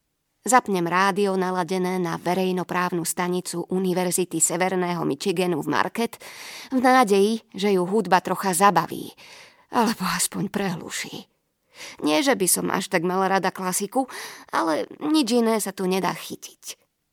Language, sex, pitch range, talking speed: Slovak, female, 185-235 Hz, 130 wpm